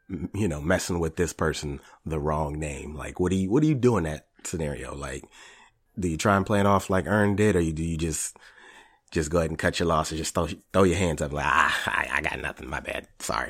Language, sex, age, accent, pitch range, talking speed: English, male, 30-49, American, 80-95 Hz, 260 wpm